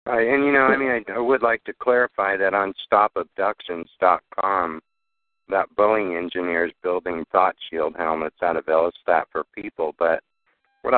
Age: 50-69